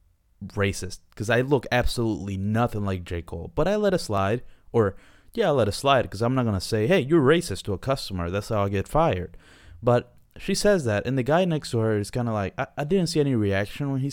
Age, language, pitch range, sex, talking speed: 20-39, English, 100-155 Hz, male, 250 wpm